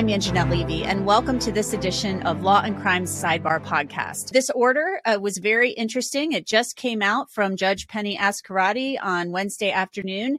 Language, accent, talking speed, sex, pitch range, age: English, American, 180 wpm, female, 180-220 Hz, 30-49